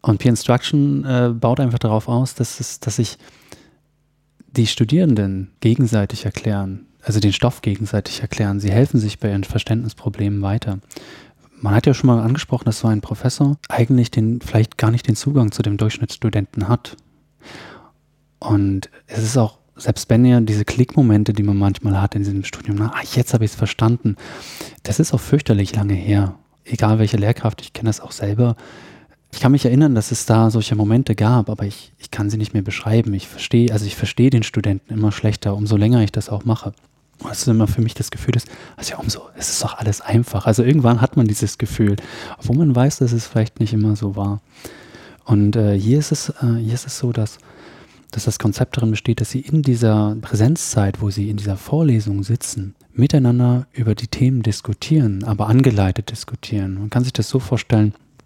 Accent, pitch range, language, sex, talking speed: German, 105-125 Hz, German, male, 185 wpm